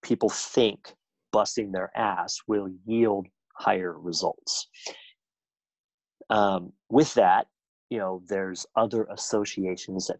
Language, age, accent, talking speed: English, 30-49, American, 105 wpm